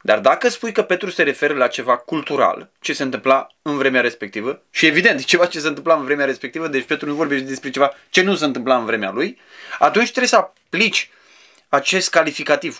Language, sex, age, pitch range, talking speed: Romanian, male, 20-39, 145-205 Hz, 205 wpm